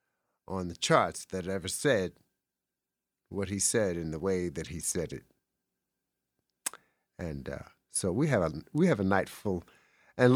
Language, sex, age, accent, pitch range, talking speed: English, male, 50-69, American, 90-115 Hz, 160 wpm